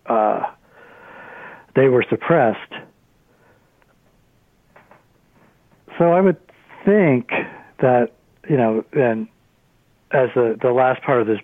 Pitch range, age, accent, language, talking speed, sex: 115-140 Hz, 60-79, American, English, 100 wpm, male